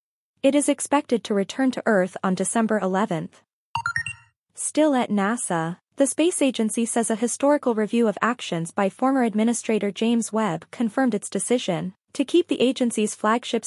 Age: 20-39